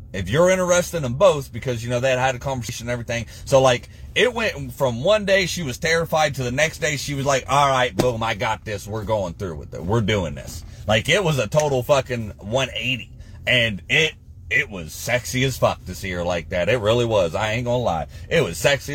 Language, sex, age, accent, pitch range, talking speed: English, male, 30-49, American, 105-145 Hz, 235 wpm